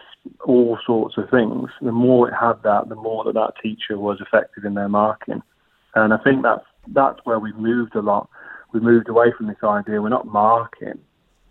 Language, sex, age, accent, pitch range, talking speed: English, male, 30-49, British, 105-115 Hz, 200 wpm